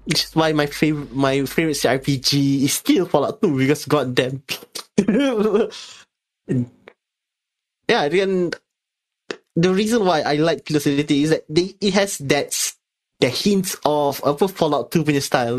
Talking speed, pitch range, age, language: 140 wpm, 145-180 Hz, 20-39, English